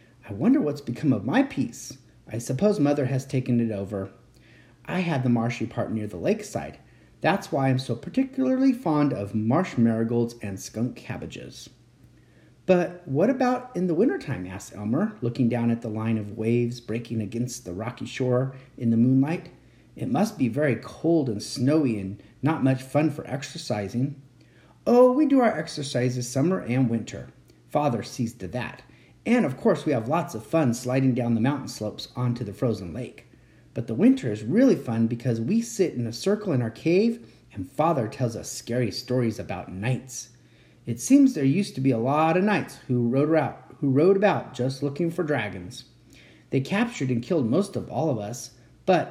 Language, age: English, 40-59